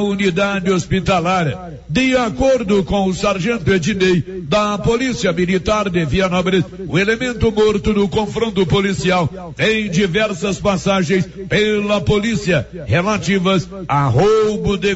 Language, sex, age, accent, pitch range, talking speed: Portuguese, male, 60-79, Brazilian, 180-210 Hz, 120 wpm